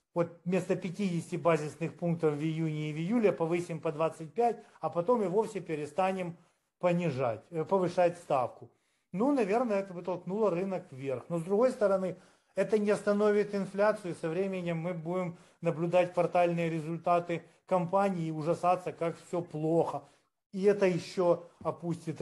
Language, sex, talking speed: Ukrainian, male, 145 wpm